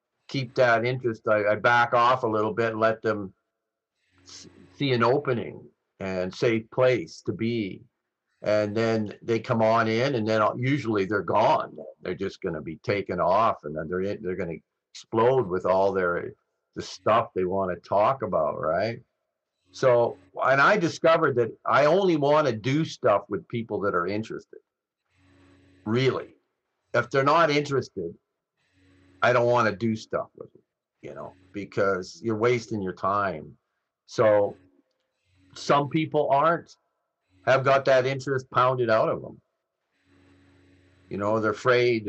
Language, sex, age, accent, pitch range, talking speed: English, male, 50-69, American, 100-130 Hz, 155 wpm